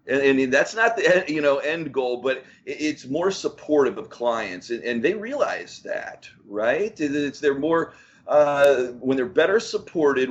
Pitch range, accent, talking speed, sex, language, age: 120-150 Hz, American, 155 wpm, male, English, 40-59